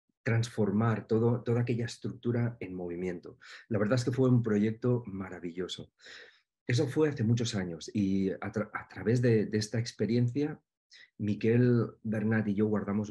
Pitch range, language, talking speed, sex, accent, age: 100-120 Hz, Portuguese, 155 wpm, male, Spanish, 40-59